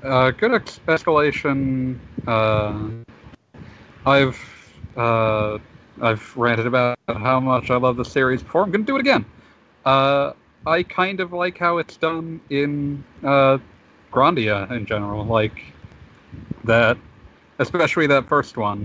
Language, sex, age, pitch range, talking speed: English, male, 40-59, 110-140 Hz, 130 wpm